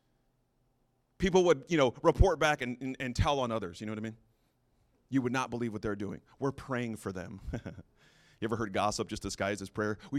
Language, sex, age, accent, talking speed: English, male, 30-49, American, 220 wpm